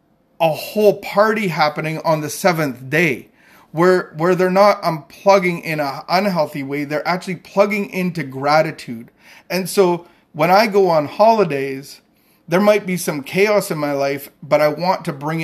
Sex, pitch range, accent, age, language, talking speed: male, 145-185 Hz, American, 30-49, English, 165 wpm